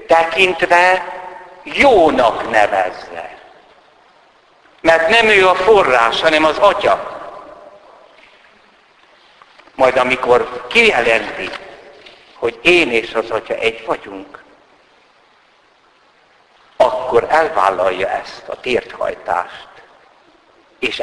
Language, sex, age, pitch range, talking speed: Hungarian, male, 60-79, 120-185 Hz, 75 wpm